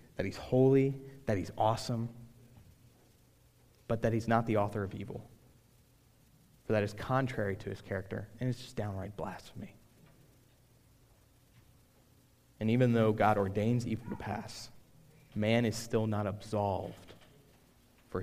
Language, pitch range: English, 105-130 Hz